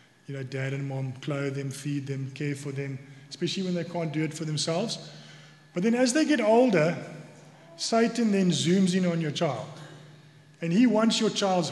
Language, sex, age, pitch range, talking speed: English, male, 20-39, 155-195 Hz, 195 wpm